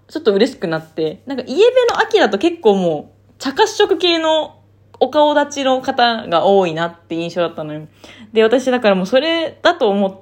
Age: 20-39